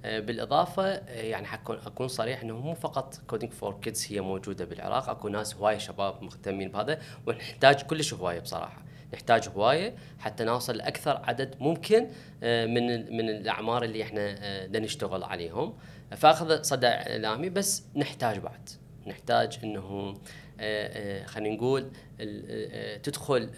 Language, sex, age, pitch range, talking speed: Arabic, female, 20-39, 110-155 Hz, 125 wpm